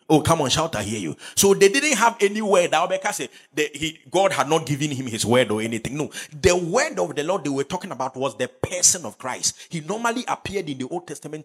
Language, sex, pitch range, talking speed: English, male, 150-220 Hz, 245 wpm